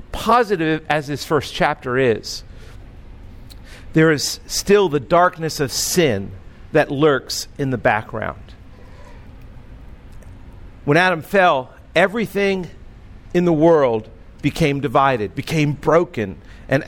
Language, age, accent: English, 50-69, American